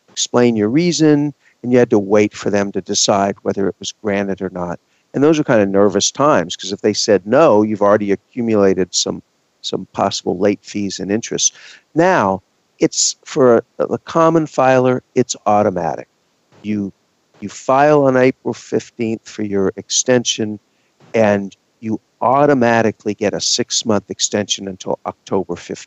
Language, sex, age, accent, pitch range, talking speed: English, male, 50-69, American, 95-120 Hz, 155 wpm